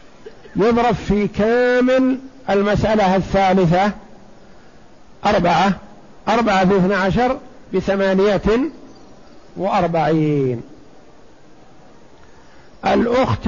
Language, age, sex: Arabic, 50-69, male